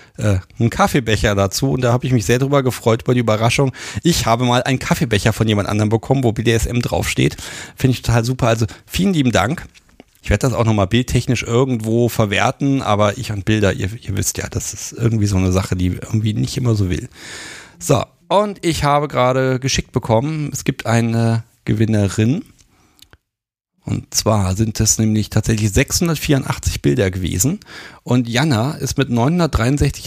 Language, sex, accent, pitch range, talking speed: German, male, German, 105-135 Hz, 175 wpm